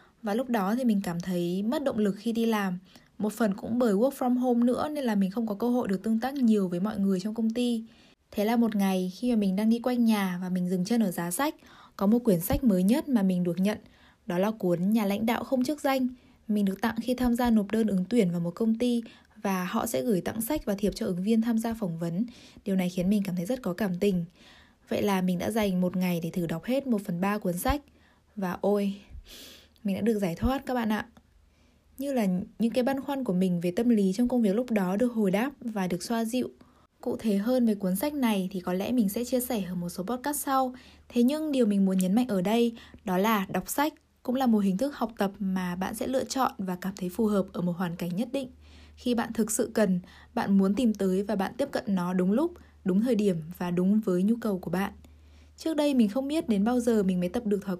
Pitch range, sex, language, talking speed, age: 190-245 Hz, female, Vietnamese, 265 wpm, 10-29